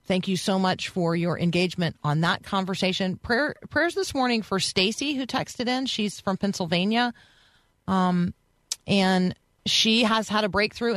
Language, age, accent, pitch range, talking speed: English, 40-59, American, 160-205 Hz, 160 wpm